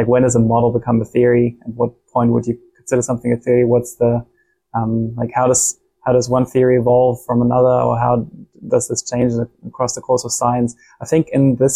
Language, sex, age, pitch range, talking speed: English, male, 20-39, 120-140 Hz, 220 wpm